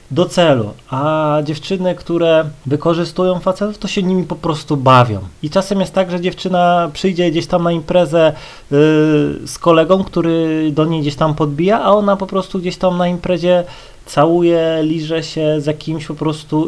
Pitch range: 135-180 Hz